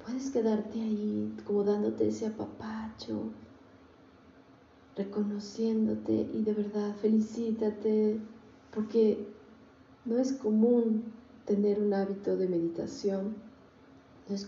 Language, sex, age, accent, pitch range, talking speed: Spanish, female, 30-49, Mexican, 185-230 Hz, 95 wpm